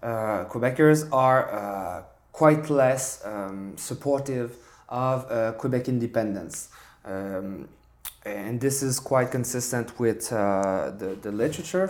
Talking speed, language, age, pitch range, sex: 115 wpm, English, 20-39, 110-135 Hz, male